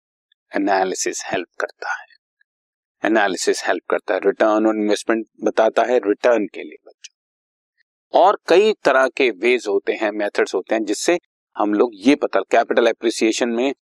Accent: native